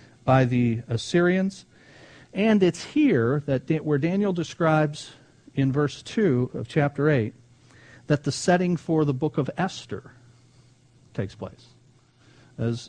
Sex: male